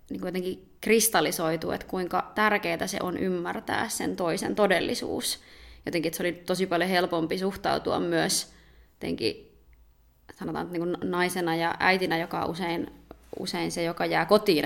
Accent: native